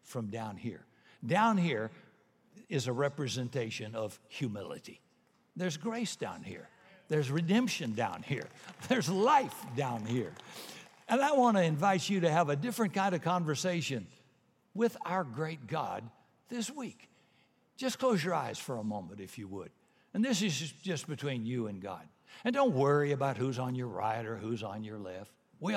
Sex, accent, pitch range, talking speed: male, American, 115-165 Hz, 170 wpm